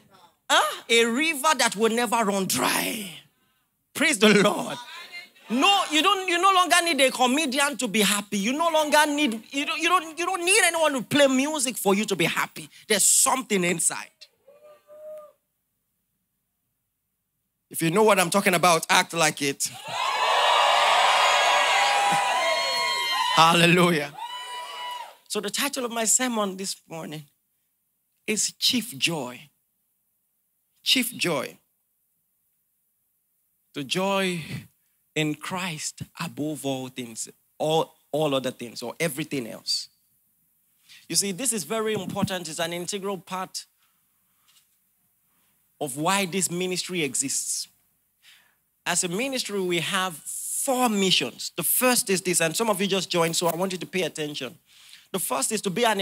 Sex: male